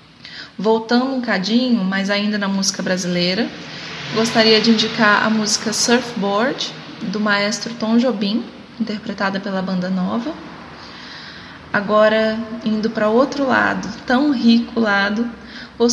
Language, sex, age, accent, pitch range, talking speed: Portuguese, female, 20-39, Brazilian, 200-230 Hz, 115 wpm